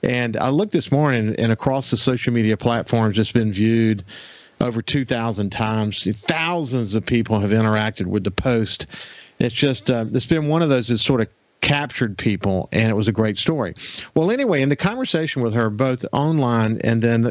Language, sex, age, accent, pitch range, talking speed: English, male, 50-69, American, 115-140 Hz, 190 wpm